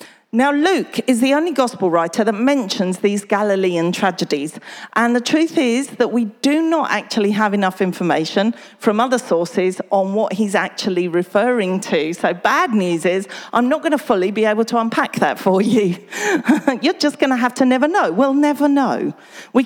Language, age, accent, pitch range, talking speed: English, 40-59, British, 190-275 Hz, 185 wpm